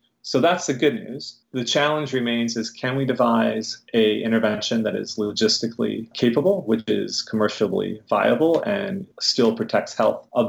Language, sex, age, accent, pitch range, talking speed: English, male, 30-49, American, 110-130 Hz, 155 wpm